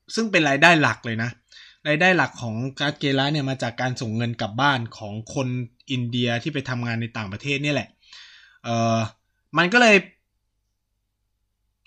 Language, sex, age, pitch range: Thai, male, 20-39, 110-145 Hz